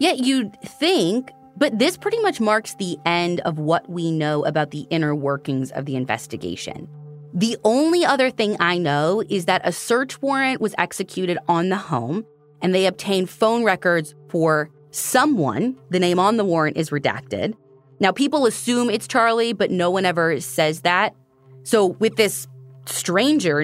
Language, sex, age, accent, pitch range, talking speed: English, female, 20-39, American, 145-215 Hz, 170 wpm